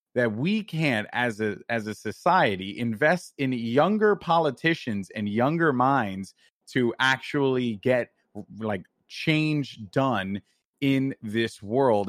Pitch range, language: 125-175 Hz, English